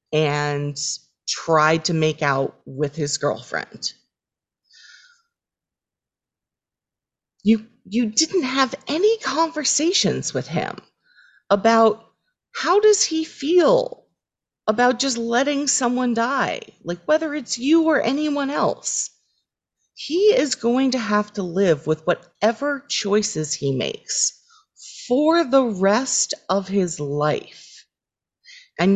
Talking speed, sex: 110 wpm, female